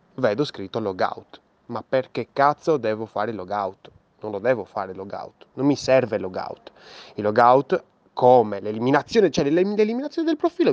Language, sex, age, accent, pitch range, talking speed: Italian, male, 20-39, native, 110-150 Hz, 145 wpm